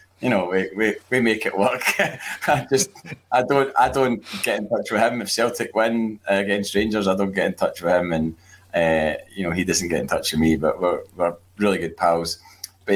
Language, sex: English, male